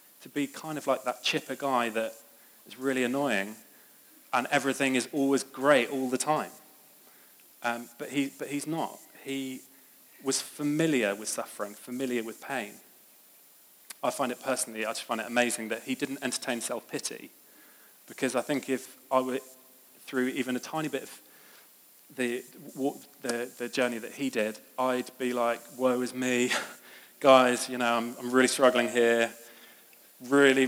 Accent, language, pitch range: British, English, 120-135 Hz